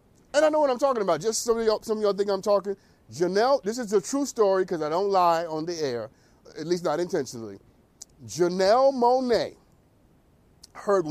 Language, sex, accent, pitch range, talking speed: English, male, American, 155-225 Hz, 200 wpm